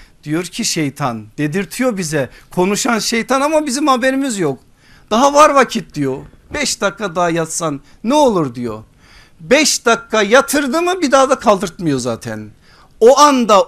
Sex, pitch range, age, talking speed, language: male, 145-230 Hz, 50-69, 145 wpm, Turkish